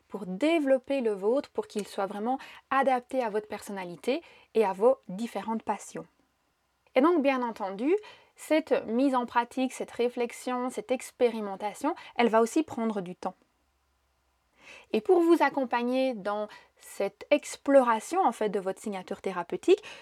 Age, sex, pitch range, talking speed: 30-49, female, 215-285 Hz, 145 wpm